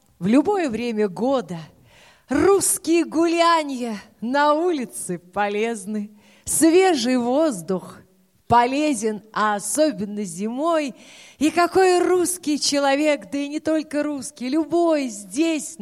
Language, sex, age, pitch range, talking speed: Russian, female, 30-49, 205-300 Hz, 100 wpm